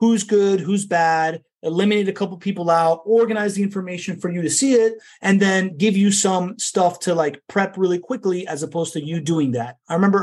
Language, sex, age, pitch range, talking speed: English, male, 30-49, 165-210 Hz, 210 wpm